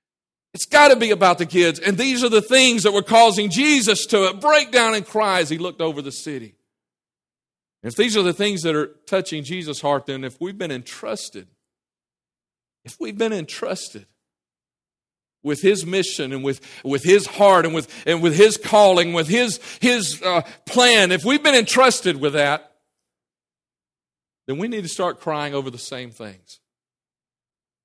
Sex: male